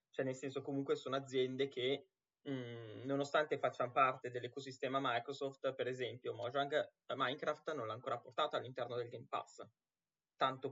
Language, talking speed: Italian, 140 wpm